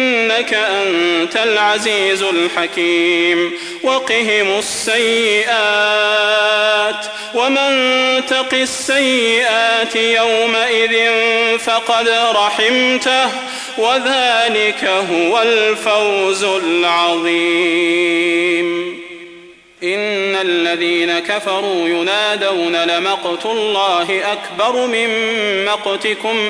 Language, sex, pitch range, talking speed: Arabic, male, 180-225 Hz, 55 wpm